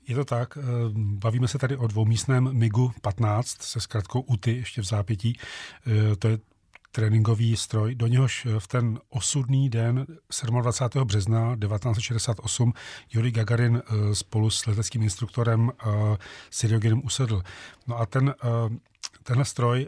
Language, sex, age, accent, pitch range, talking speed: Czech, male, 40-59, native, 110-125 Hz, 125 wpm